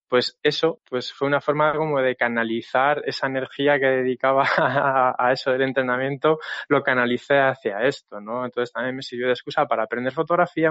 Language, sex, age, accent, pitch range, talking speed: Spanish, male, 20-39, Spanish, 130-150 Hz, 175 wpm